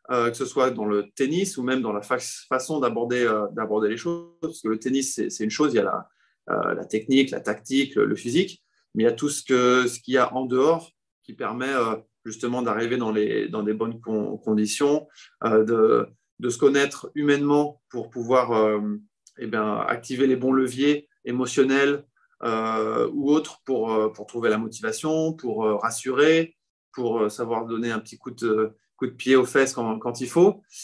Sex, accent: male, French